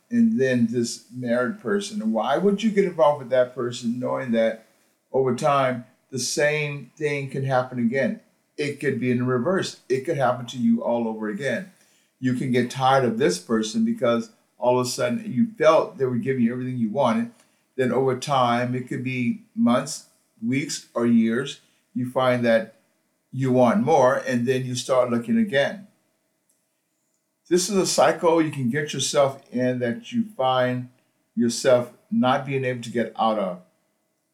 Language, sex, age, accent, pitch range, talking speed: English, male, 50-69, American, 115-145 Hz, 175 wpm